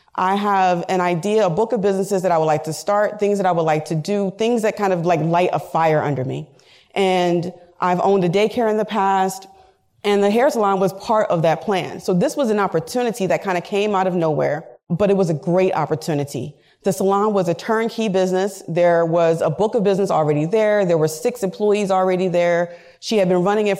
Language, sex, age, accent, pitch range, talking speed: English, female, 30-49, American, 170-210 Hz, 230 wpm